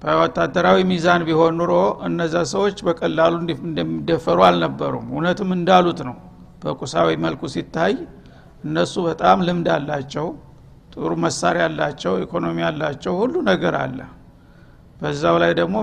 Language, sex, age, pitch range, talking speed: Amharic, male, 60-79, 135-175 Hz, 105 wpm